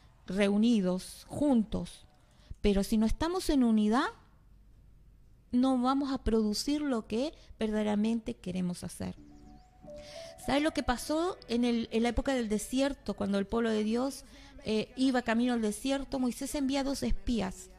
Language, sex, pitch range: Spanish, female, 210-275 Hz